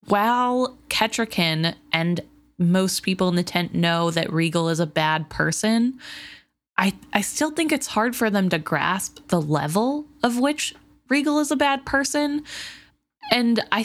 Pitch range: 165-220 Hz